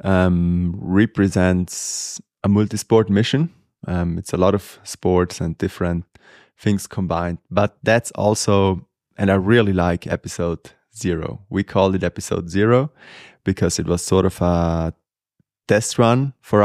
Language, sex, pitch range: English, male, 90-105 Hz